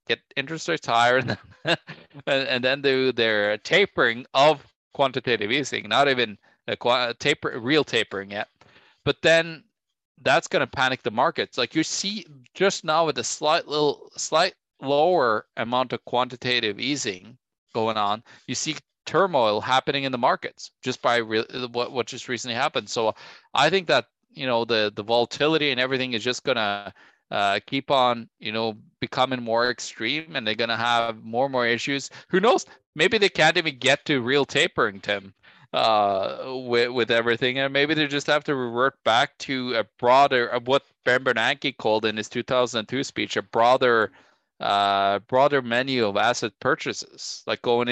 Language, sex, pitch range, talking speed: English, male, 115-140 Hz, 180 wpm